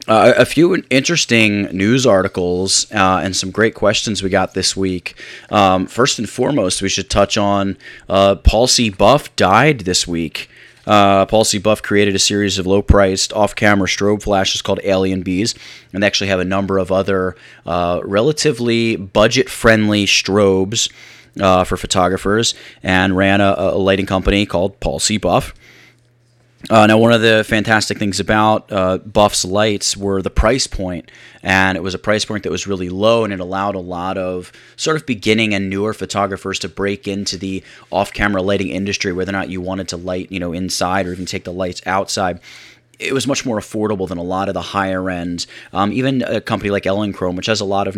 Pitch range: 95-105 Hz